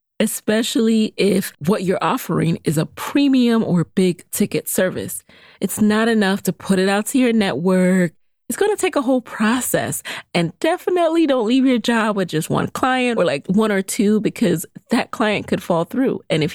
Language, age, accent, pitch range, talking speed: English, 30-49, American, 170-225 Hz, 190 wpm